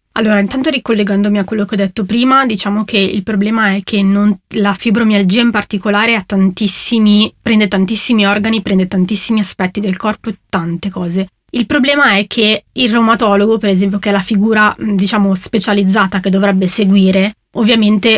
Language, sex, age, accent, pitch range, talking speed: Italian, female, 20-39, native, 195-220 Hz, 170 wpm